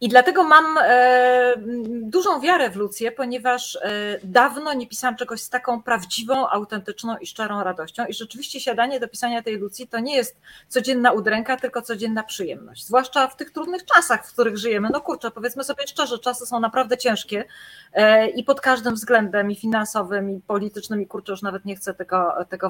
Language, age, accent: Polish, 30-49, native